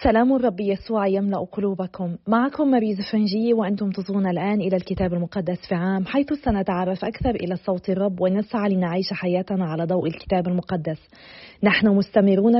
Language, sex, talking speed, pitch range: Arabic, female, 150 wpm, 180-210 Hz